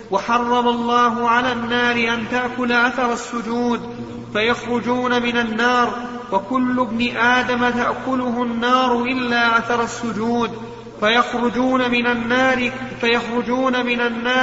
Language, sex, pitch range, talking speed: Arabic, male, 235-250 Hz, 95 wpm